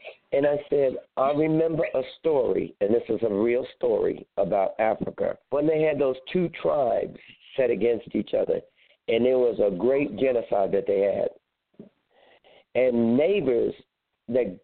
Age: 60-79